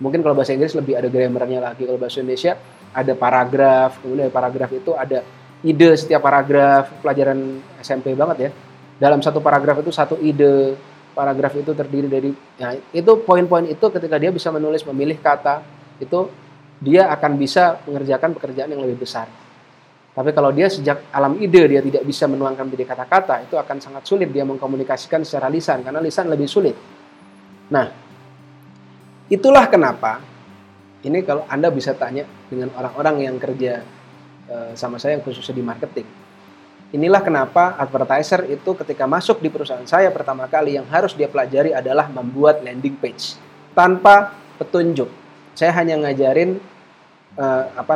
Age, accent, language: 30-49, native, Indonesian